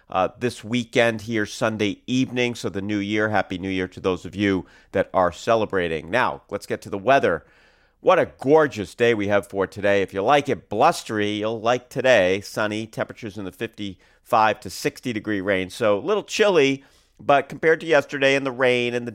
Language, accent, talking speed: English, American, 200 wpm